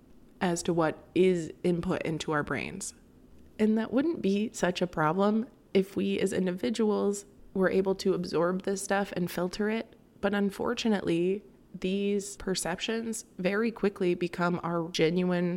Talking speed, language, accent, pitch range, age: 145 wpm, English, American, 170-205 Hz, 20-39